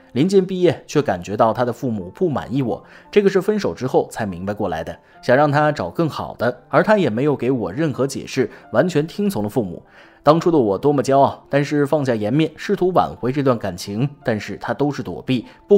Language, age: Chinese, 20-39